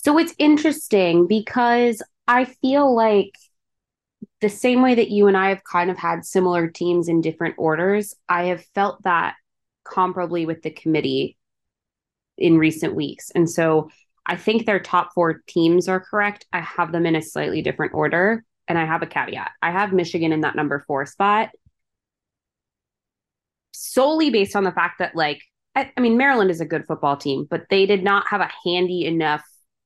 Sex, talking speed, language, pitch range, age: female, 180 wpm, English, 155-200 Hz, 20-39